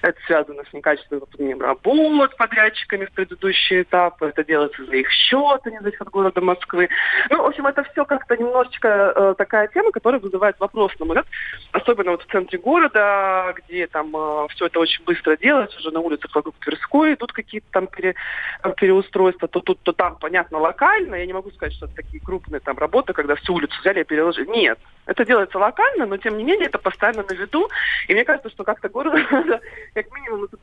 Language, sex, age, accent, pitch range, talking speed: Russian, male, 20-39, native, 170-240 Hz, 200 wpm